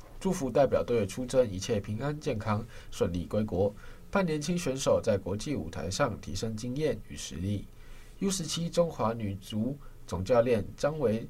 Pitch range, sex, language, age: 100-160 Hz, male, Chinese, 20-39